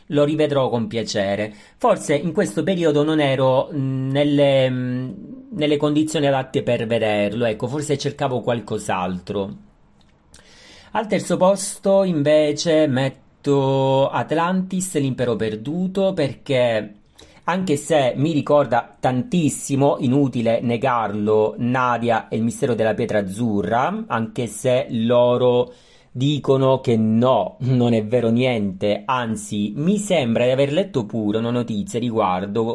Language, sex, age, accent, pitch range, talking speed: Italian, male, 40-59, native, 110-140 Hz, 115 wpm